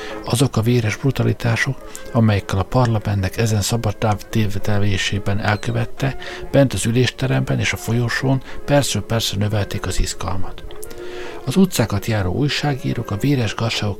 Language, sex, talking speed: Hungarian, male, 125 wpm